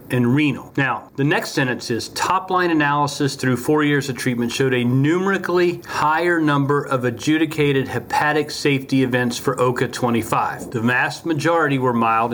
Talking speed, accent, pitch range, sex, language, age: 150 wpm, American, 125-155 Hz, male, English, 40-59